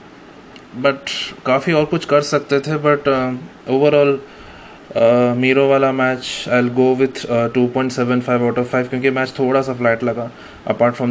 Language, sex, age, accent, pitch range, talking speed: Hindi, male, 20-39, native, 115-130 Hz, 150 wpm